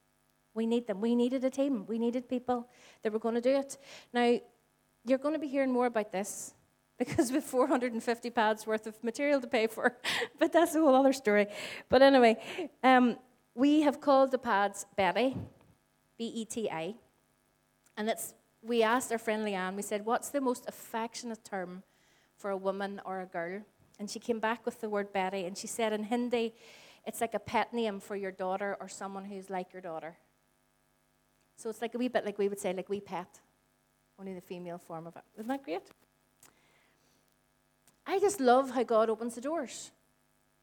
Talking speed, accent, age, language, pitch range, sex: 190 wpm, Irish, 30-49, English, 210-265 Hz, female